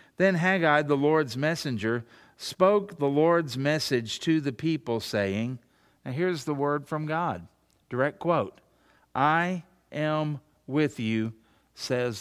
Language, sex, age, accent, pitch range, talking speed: English, male, 50-69, American, 120-170 Hz, 130 wpm